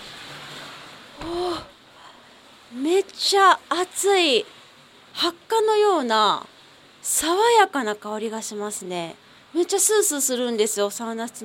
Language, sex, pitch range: Japanese, female, 205-300 Hz